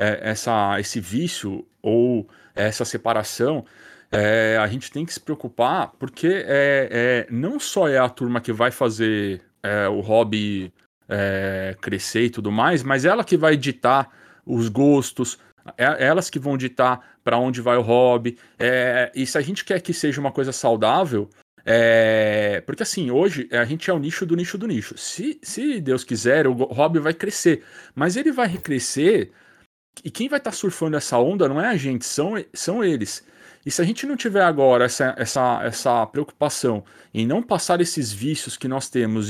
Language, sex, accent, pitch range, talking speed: Portuguese, male, Brazilian, 115-145 Hz, 165 wpm